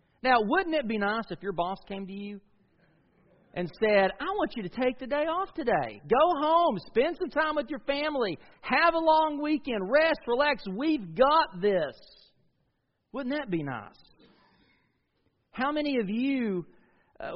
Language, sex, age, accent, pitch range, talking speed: English, male, 40-59, American, 175-255 Hz, 165 wpm